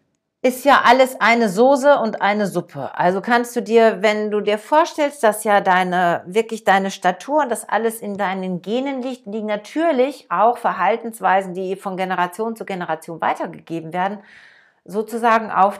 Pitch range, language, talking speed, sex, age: 165-235 Hz, German, 160 wpm, female, 50-69